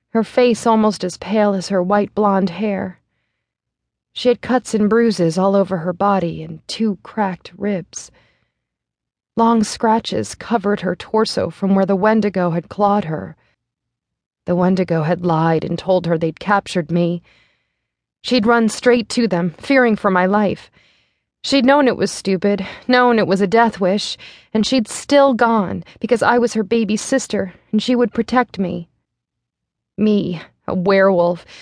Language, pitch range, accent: English, 180-220 Hz, American